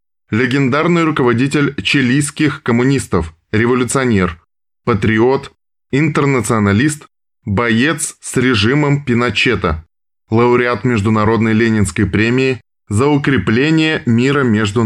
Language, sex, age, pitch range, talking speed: Russian, male, 20-39, 105-135 Hz, 75 wpm